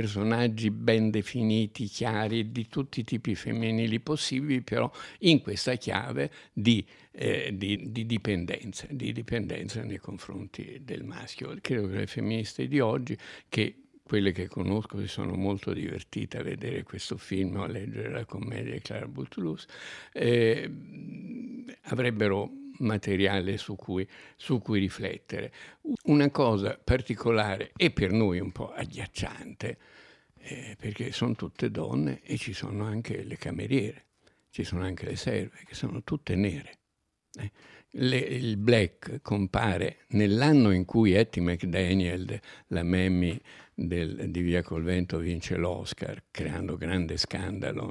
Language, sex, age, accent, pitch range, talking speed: Italian, male, 60-79, native, 95-120 Hz, 135 wpm